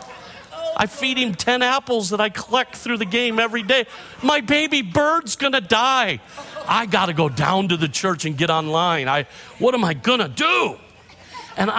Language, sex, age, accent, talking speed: English, male, 50-69, American, 180 wpm